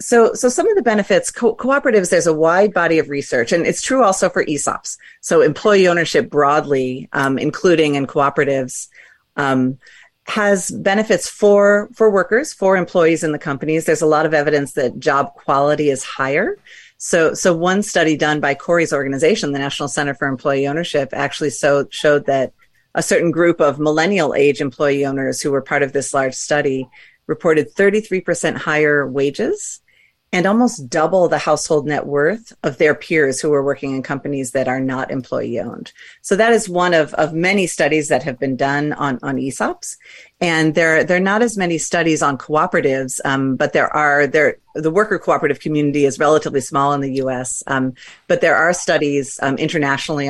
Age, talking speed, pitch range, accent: 40-59, 180 wpm, 140-180 Hz, American